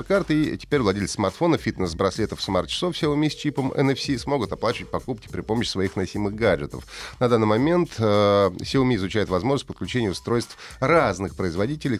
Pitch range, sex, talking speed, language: 95-140 Hz, male, 155 wpm, Russian